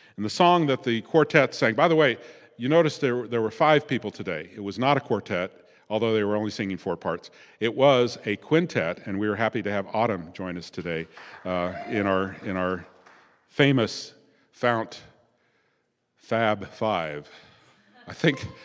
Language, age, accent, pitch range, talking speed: English, 50-69, American, 105-150 Hz, 175 wpm